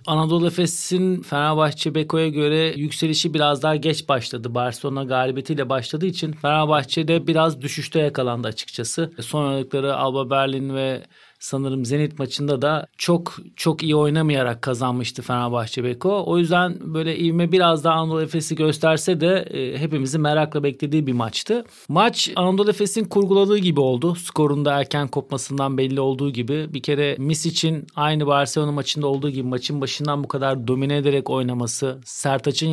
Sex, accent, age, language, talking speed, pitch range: male, native, 40-59, Turkish, 145 wpm, 135-160 Hz